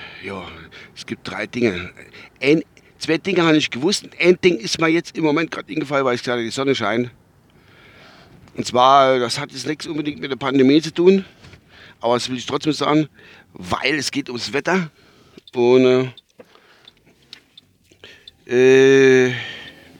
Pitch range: 110-145 Hz